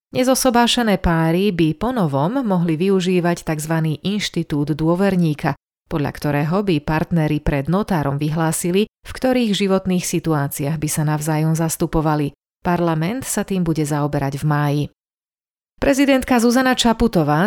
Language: Slovak